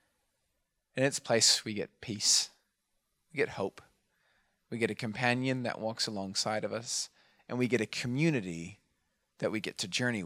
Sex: male